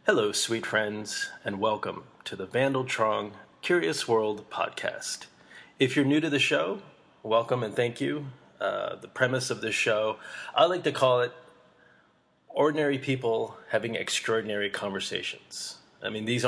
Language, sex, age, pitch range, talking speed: English, male, 20-39, 105-135 Hz, 150 wpm